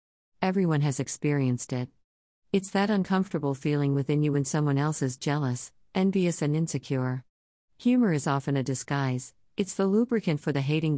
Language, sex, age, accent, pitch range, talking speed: English, female, 50-69, American, 125-165 Hz, 160 wpm